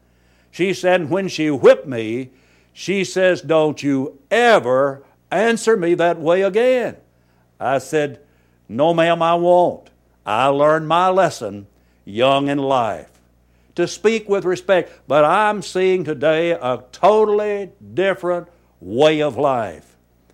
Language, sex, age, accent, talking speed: English, male, 60-79, American, 125 wpm